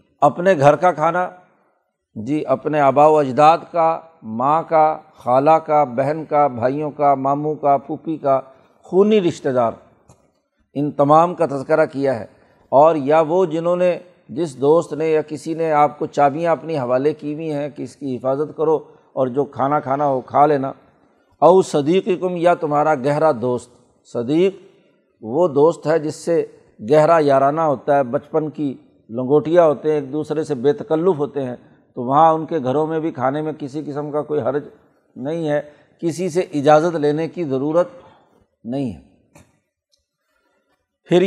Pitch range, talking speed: 145-170 Hz, 165 wpm